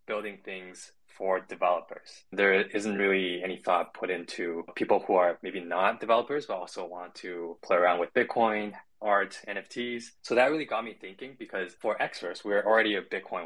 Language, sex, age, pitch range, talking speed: English, male, 20-39, 90-105 Hz, 180 wpm